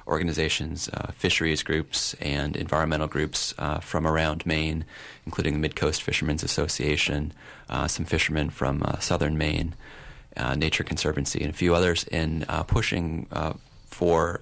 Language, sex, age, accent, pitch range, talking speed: English, male, 30-49, American, 75-85 Hz, 145 wpm